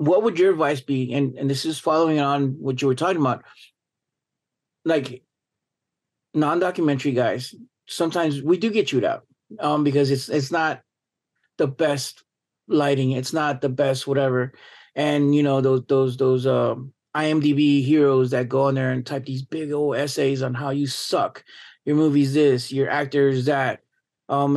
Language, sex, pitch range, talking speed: English, male, 135-150 Hz, 165 wpm